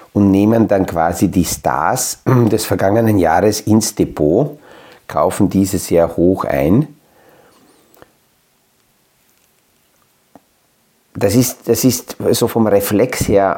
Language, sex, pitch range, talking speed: German, male, 90-110 Hz, 110 wpm